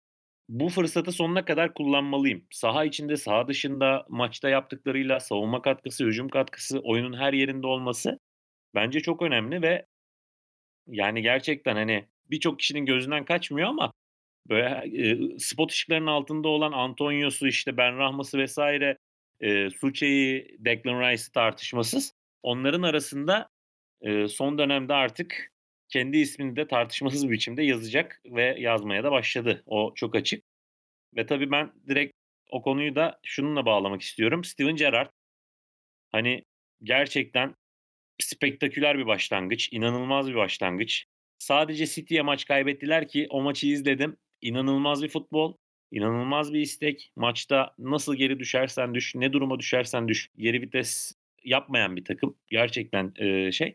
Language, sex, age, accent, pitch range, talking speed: Turkish, male, 40-59, native, 120-145 Hz, 130 wpm